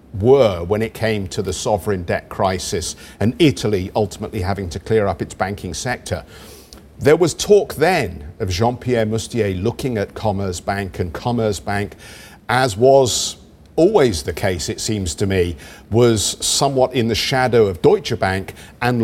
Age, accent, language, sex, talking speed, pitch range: 50-69, British, English, male, 160 wpm, 95-130 Hz